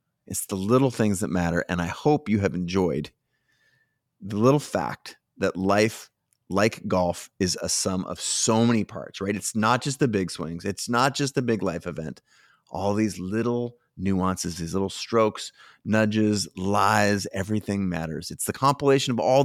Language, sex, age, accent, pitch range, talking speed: English, male, 30-49, American, 95-120 Hz, 175 wpm